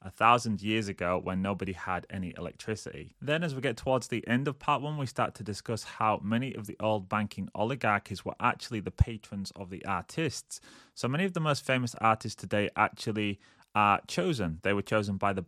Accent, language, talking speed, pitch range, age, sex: British, English, 205 wpm, 95-115 Hz, 20-39, male